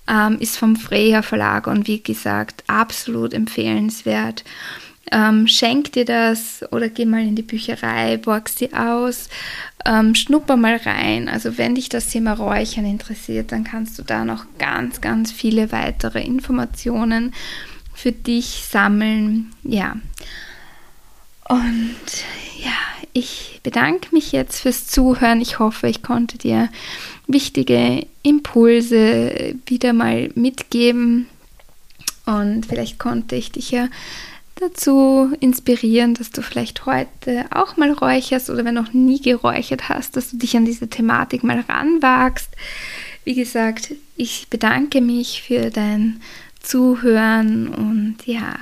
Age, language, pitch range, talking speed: 10-29, German, 215-250 Hz, 130 wpm